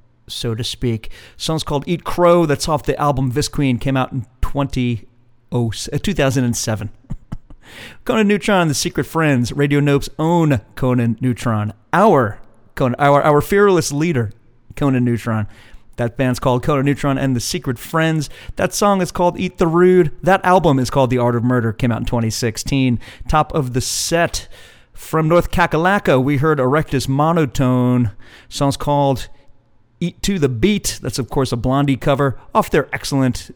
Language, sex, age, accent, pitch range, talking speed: English, male, 40-59, American, 120-165 Hz, 160 wpm